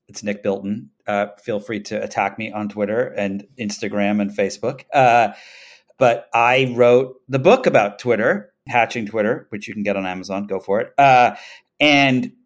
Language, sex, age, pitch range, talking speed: English, male, 40-59, 105-135 Hz, 175 wpm